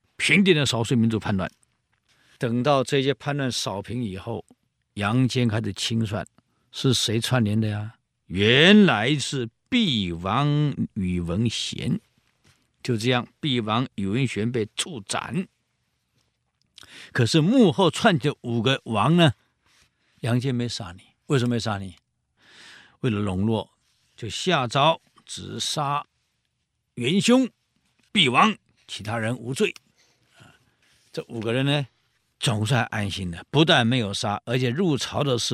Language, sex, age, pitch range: Chinese, male, 50-69, 115-155 Hz